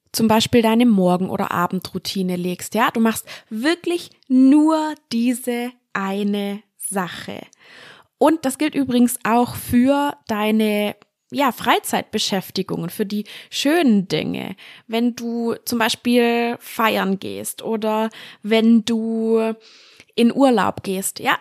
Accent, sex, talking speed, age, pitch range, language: German, female, 115 wpm, 20-39, 200-250 Hz, German